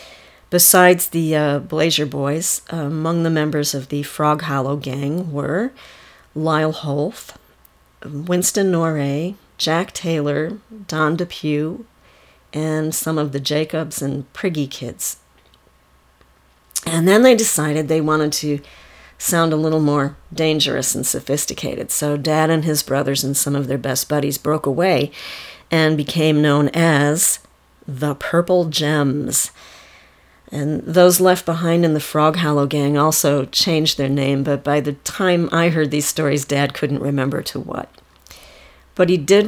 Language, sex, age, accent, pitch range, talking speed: English, female, 50-69, American, 140-170 Hz, 145 wpm